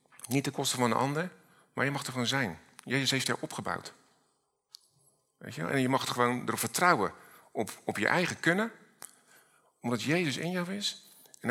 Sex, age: male, 50-69